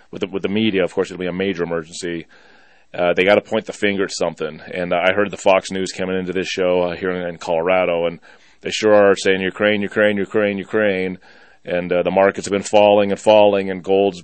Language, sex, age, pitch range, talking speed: English, male, 30-49, 90-105 Hz, 235 wpm